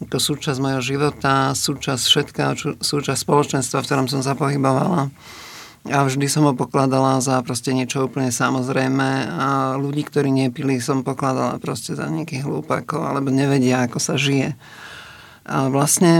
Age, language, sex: 50-69, English, male